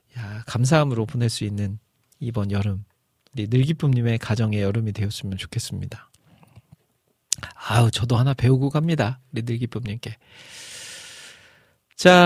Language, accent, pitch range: Korean, native, 115-165 Hz